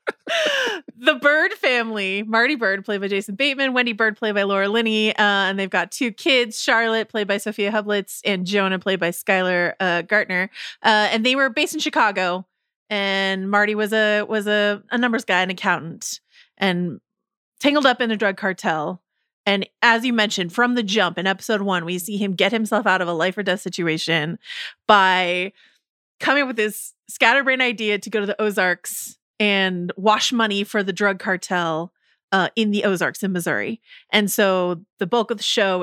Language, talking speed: English, 190 wpm